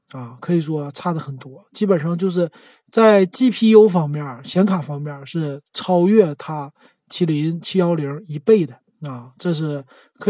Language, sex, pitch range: Chinese, male, 150-205 Hz